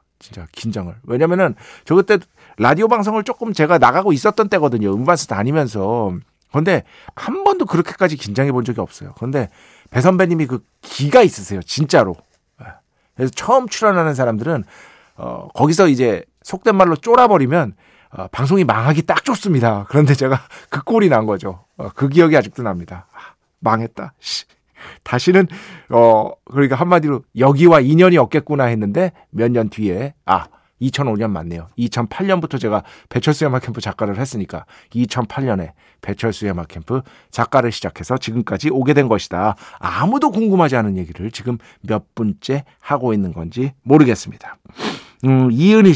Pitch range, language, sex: 105-160 Hz, Korean, male